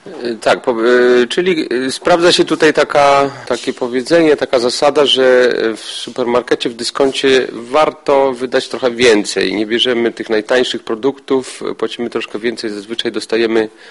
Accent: native